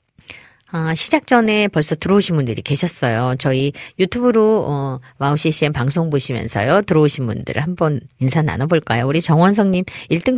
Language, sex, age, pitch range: Korean, female, 40-59, 135-190 Hz